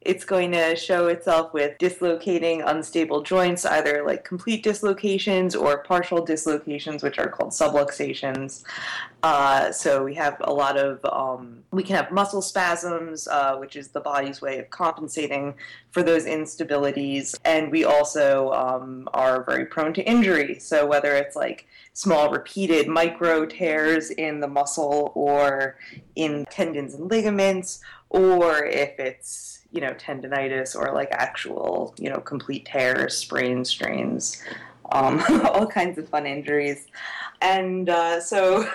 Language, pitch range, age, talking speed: English, 140-180 Hz, 20-39, 145 wpm